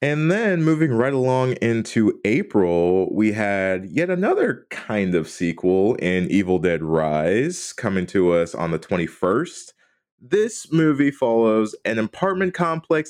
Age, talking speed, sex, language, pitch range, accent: 20-39, 140 wpm, male, English, 85-120 Hz, American